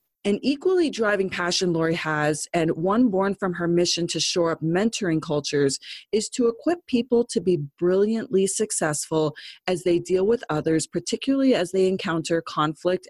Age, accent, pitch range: 30-49, American, 160-215 Hz